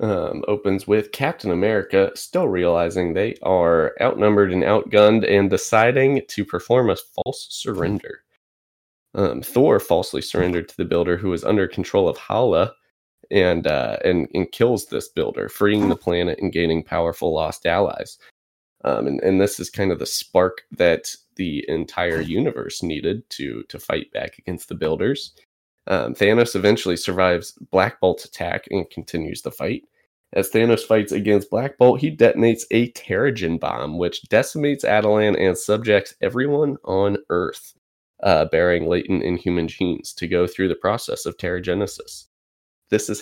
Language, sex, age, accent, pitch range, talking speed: English, male, 20-39, American, 90-105 Hz, 155 wpm